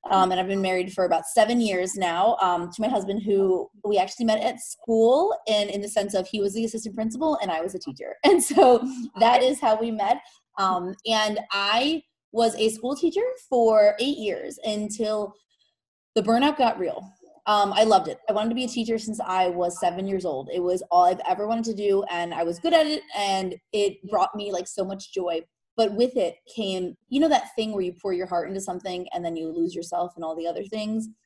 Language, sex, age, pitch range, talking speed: English, female, 20-39, 185-225 Hz, 230 wpm